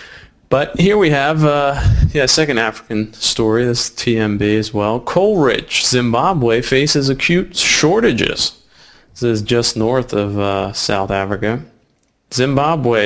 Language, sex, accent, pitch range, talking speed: English, male, American, 110-145 Hz, 130 wpm